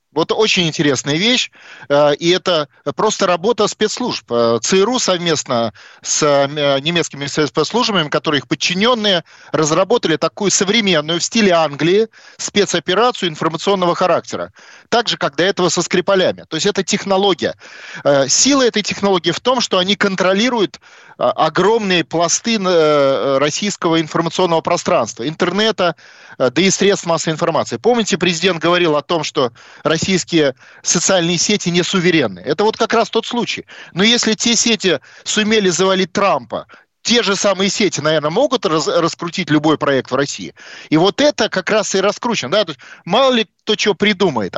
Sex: male